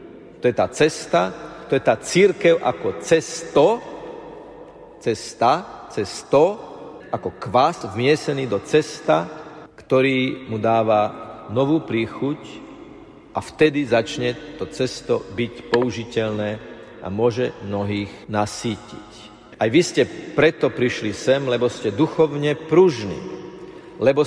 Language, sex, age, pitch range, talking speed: Slovak, male, 50-69, 120-160 Hz, 110 wpm